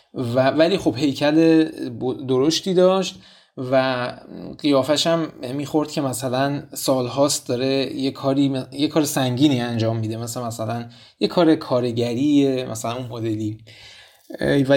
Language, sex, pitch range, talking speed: Persian, male, 125-155 Hz, 120 wpm